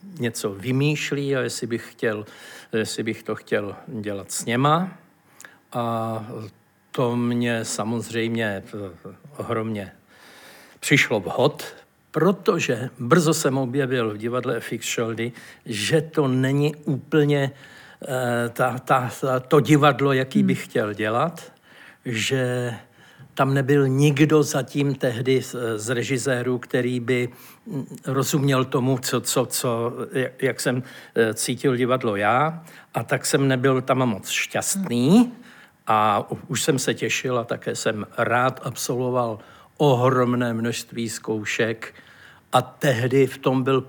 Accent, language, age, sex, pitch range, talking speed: native, Czech, 60-79, male, 115-135 Hz, 110 wpm